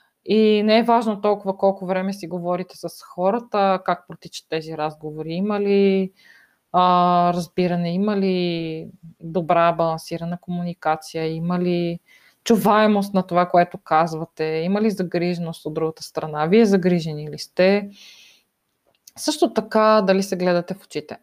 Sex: female